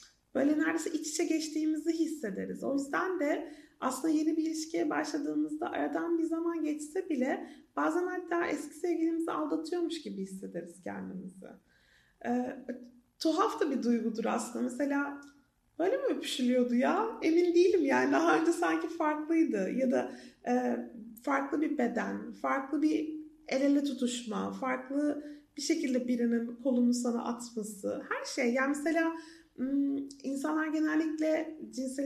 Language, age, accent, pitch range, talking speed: Turkish, 30-49, native, 255-320 Hz, 130 wpm